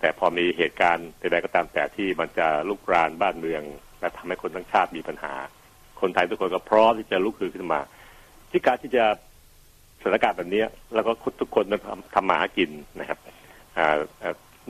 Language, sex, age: Thai, male, 60-79